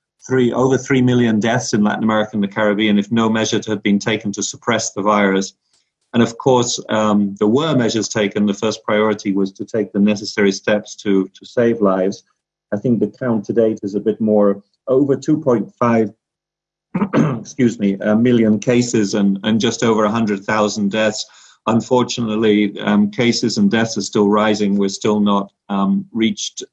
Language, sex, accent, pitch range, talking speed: English, male, British, 105-115 Hz, 180 wpm